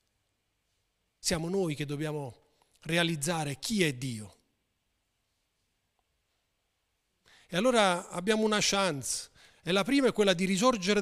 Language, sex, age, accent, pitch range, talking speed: Italian, male, 40-59, native, 135-215 Hz, 110 wpm